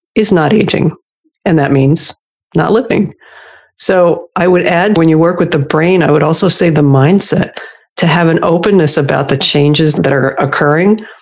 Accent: American